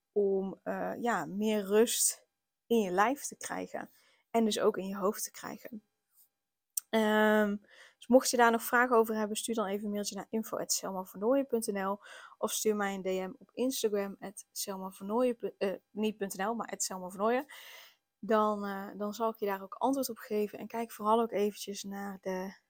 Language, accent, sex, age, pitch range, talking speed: Dutch, Dutch, female, 10-29, 195-220 Hz, 170 wpm